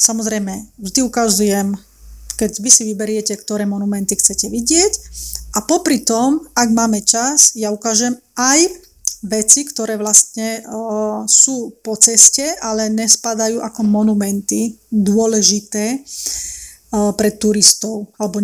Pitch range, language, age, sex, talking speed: 215-240 Hz, Slovak, 30-49, female, 110 wpm